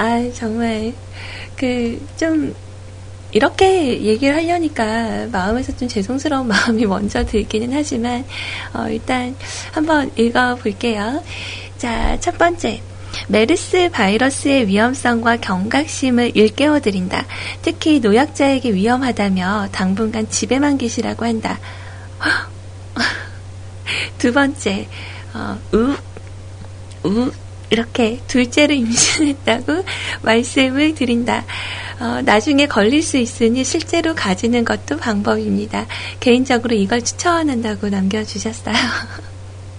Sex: female